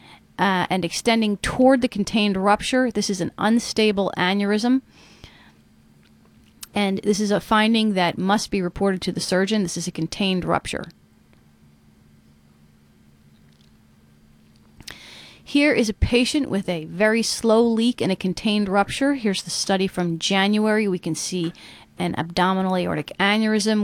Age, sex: 30-49, female